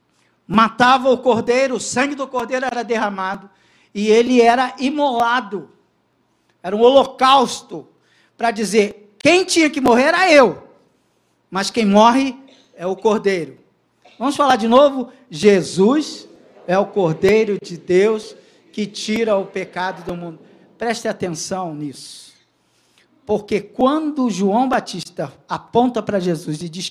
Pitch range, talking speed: 195-255 Hz, 130 wpm